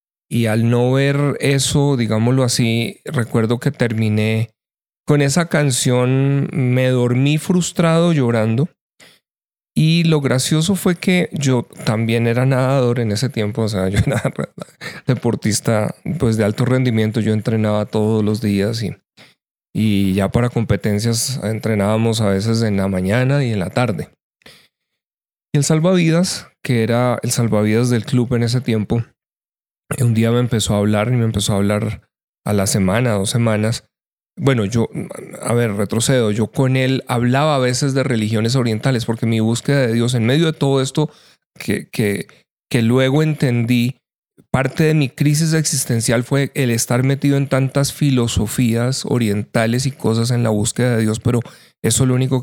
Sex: male